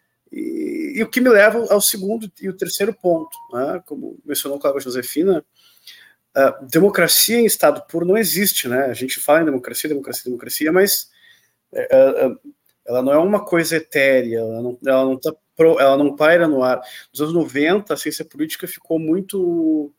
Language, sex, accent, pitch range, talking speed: Portuguese, male, Brazilian, 140-205 Hz, 175 wpm